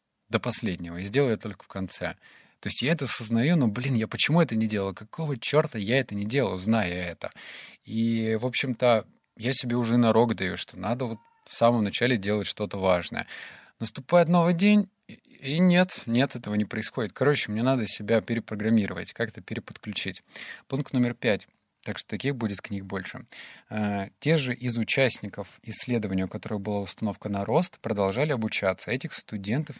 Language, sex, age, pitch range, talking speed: Russian, male, 20-39, 100-130 Hz, 175 wpm